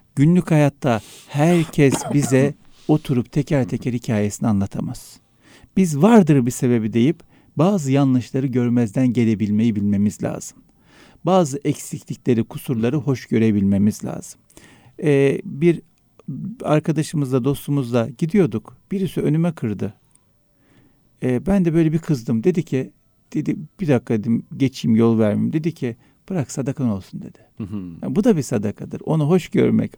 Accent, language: native, Turkish